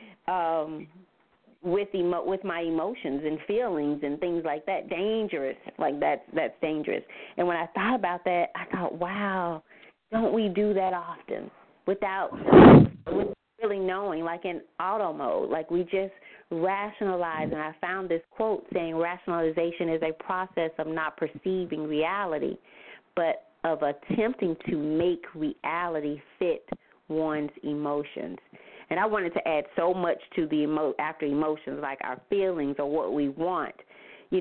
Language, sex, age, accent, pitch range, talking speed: English, female, 30-49, American, 155-195 Hz, 150 wpm